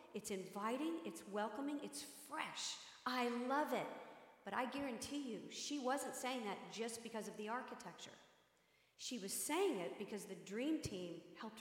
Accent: American